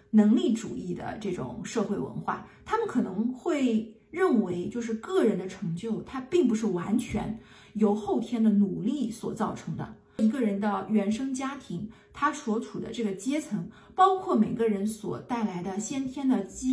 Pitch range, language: 210-265 Hz, Chinese